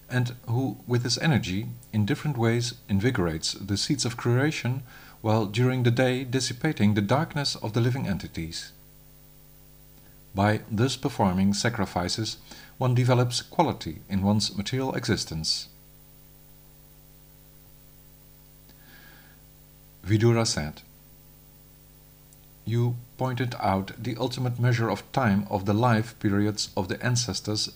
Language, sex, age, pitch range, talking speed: English, male, 50-69, 100-130 Hz, 110 wpm